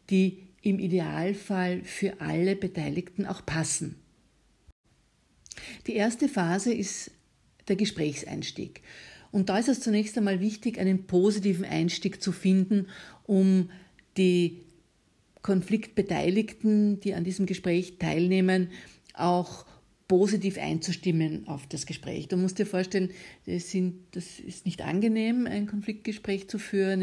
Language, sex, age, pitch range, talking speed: German, female, 50-69, 175-195 Hz, 120 wpm